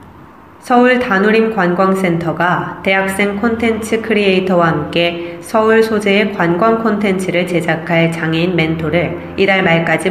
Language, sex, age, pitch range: Korean, female, 20-39, 170-200 Hz